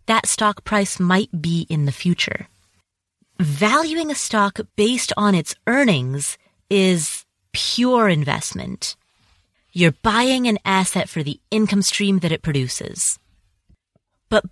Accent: American